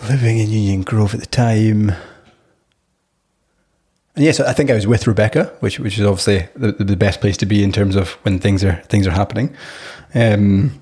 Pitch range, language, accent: 100-120 Hz, English, British